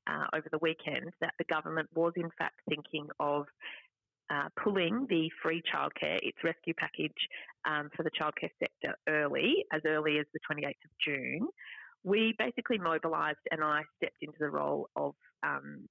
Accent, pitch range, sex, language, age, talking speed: Australian, 155-190 Hz, female, English, 30-49, 165 wpm